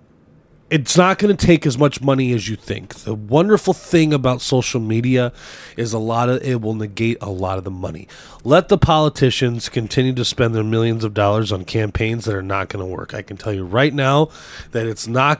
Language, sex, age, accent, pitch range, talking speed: English, male, 20-39, American, 110-150 Hz, 210 wpm